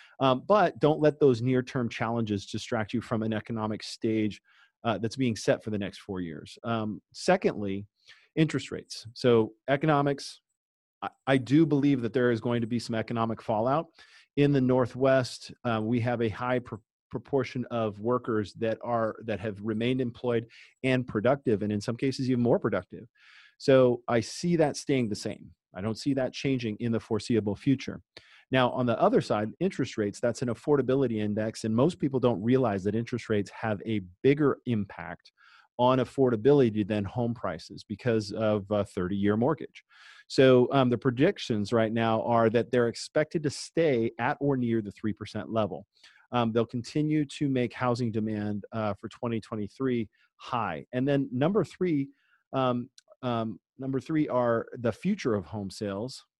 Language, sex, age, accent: English, male, 40-59, American